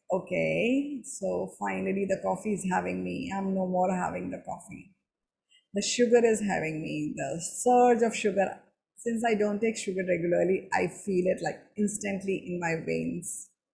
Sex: female